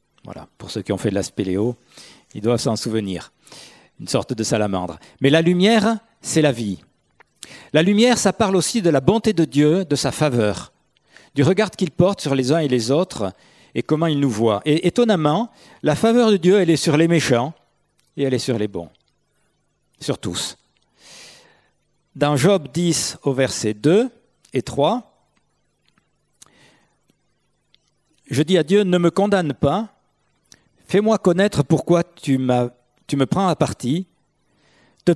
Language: French